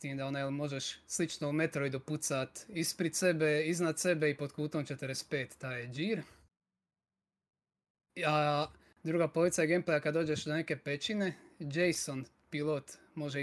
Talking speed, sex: 135 wpm, male